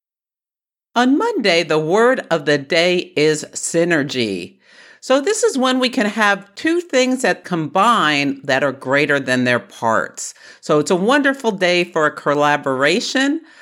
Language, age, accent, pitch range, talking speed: English, 50-69, American, 125-185 Hz, 150 wpm